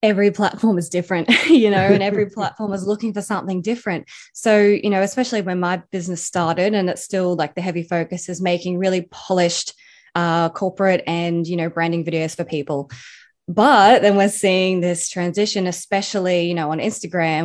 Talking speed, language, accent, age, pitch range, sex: 180 wpm, English, Australian, 20-39, 165-200 Hz, female